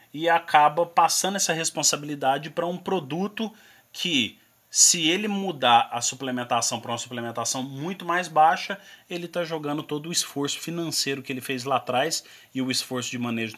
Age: 30-49